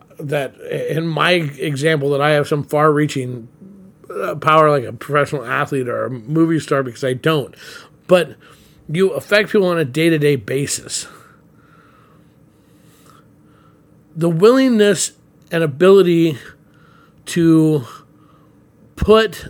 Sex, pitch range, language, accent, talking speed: male, 150-180 Hz, English, American, 110 wpm